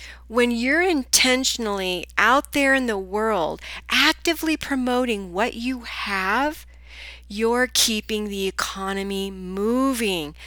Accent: American